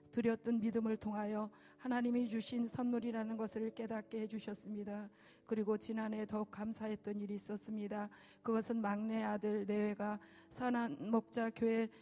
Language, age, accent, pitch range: Korean, 40-59, native, 210-230 Hz